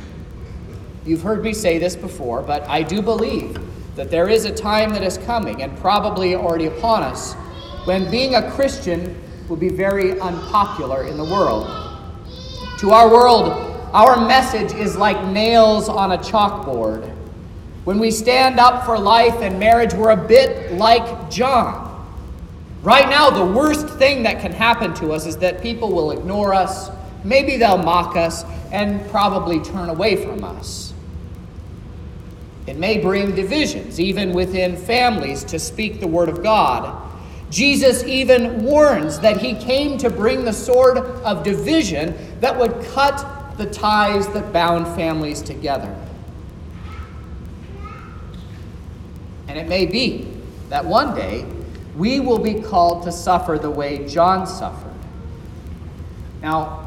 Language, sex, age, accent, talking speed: English, male, 40-59, American, 145 wpm